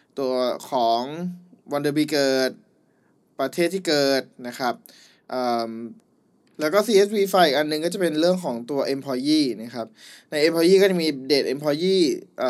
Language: Thai